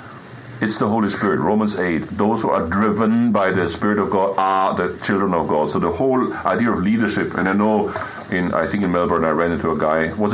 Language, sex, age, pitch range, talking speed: English, male, 60-79, 115-160 Hz, 230 wpm